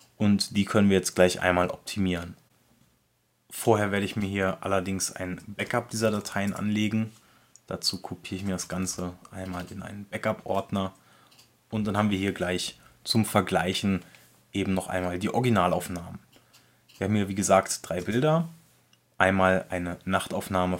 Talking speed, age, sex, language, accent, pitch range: 150 wpm, 20-39, male, German, German, 95-110 Hz